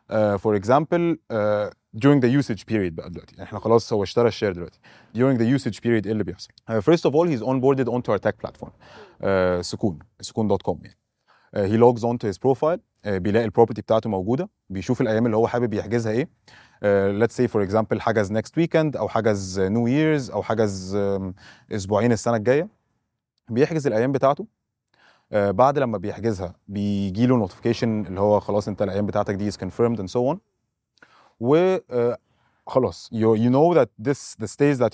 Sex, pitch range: male, 105-125 Hz